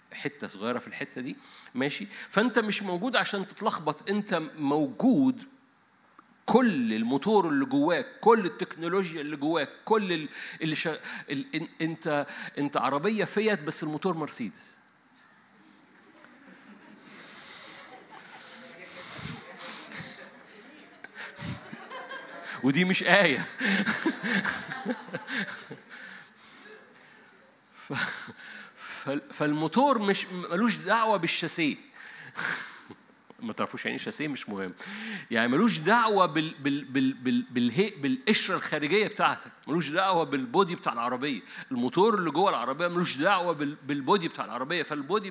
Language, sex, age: Arabic, male, 50-69